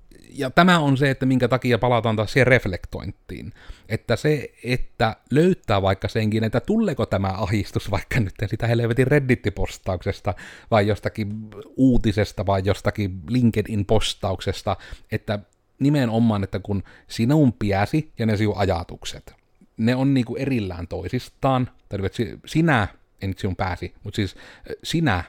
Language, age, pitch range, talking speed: Finnish, 30-49, 100-120 Hz, 135 wpm